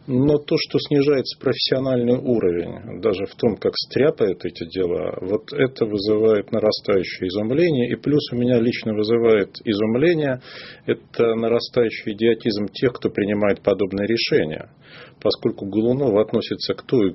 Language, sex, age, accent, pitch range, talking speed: Russian, male, 40-59, native, 100-125 Hz, 135 wpm